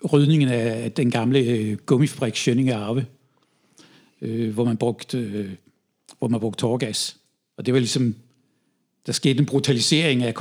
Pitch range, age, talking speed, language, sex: 120-140 Hz, 60-79, 135 wpm, Danish, male